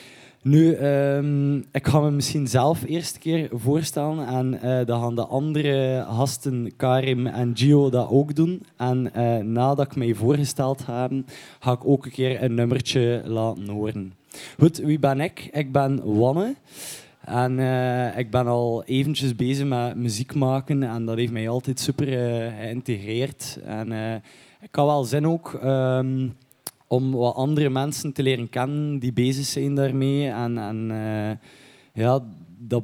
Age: 20-39